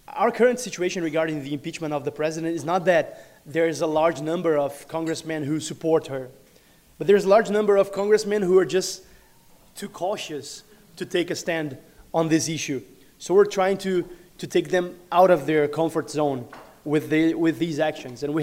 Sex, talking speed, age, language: male, 195 wpm, 20-39, English